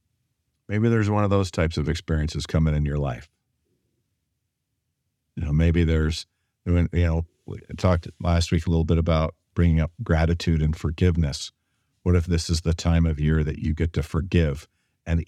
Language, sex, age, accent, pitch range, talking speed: English, male, 50-69, American, 80-100 Hz, 175 wpm